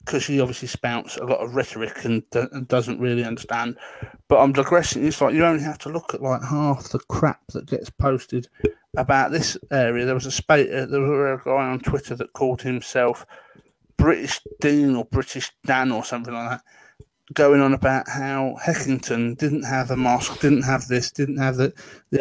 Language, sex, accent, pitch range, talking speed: English, male, British, 125-140 Hz, 195 wpm